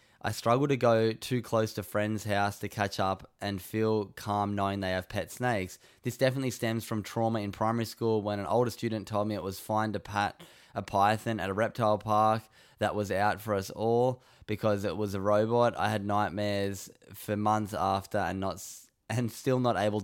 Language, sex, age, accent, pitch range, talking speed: English, male, 10-29, Australian, 100-120 Hz, 205 wpm